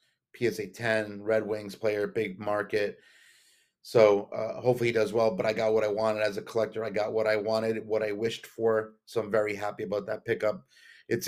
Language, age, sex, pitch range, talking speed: English, 30-49, male, 110-125 Hz, 205 wpm